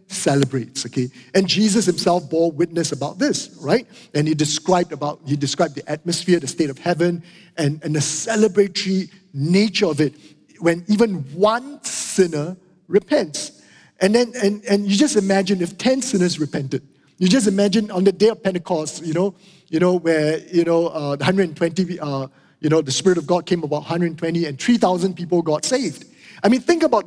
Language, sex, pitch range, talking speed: English, male, 160-205 Hz, 180 wpm